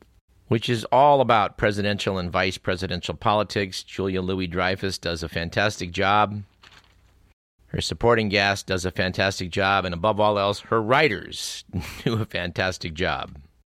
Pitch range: 90-115 Hz